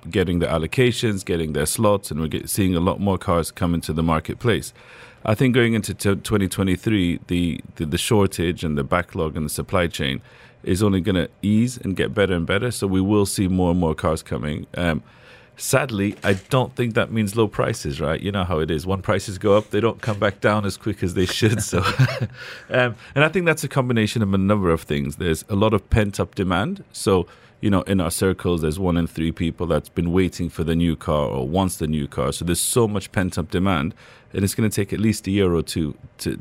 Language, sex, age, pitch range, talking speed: English, male, 40-59, 85-110 Hz, 230 wpm